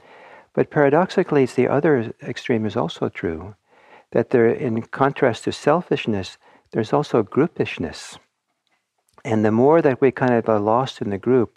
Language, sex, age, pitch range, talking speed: English, male, 60-79, 95-125 Hz, 155 wpm